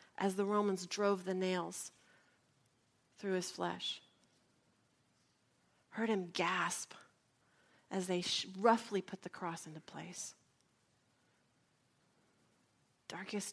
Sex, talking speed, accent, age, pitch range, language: female, 100 wpm, American, 40-59, 195-255 Hz, English